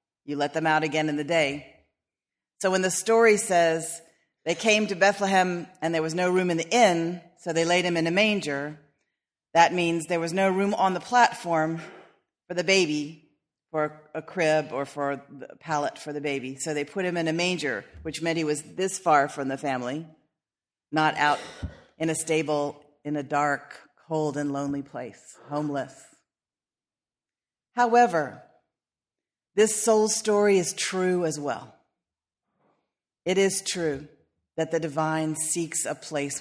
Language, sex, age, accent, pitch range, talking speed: English, female, 40-59, American, 150-180 Hz, 165 wpm